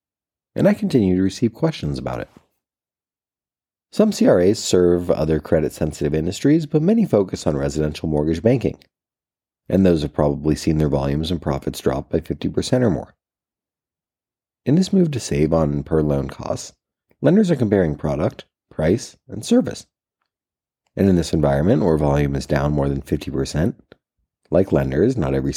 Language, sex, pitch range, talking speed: English, male, 75-110 Hz, 155 wpm